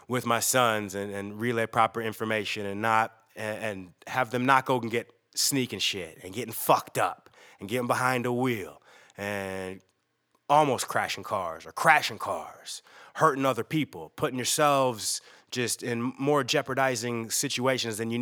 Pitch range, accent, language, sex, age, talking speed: 110-140 Hz, American, English, male, 20-39, 150 wpm